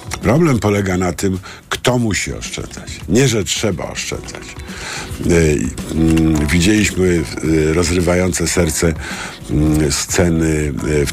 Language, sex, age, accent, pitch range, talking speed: Polish, male, 50-69, native, 80-100 Hz, 85 wpm